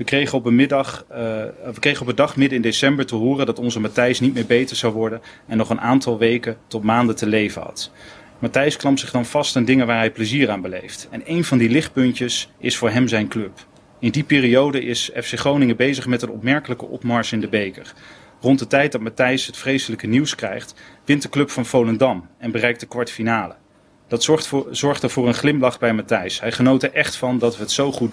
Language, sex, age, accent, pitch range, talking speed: Dutch, male, 30-49, Dutch, 115-135 Hz, 230 wpm